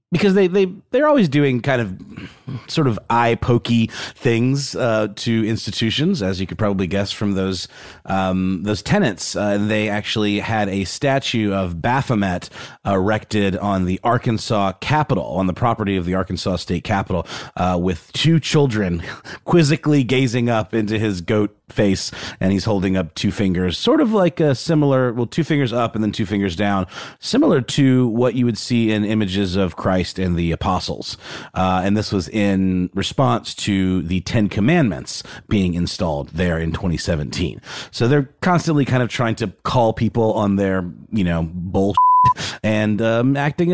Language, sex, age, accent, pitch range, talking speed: English, male, 30-49, American, 95-125 Hz, 170 wpm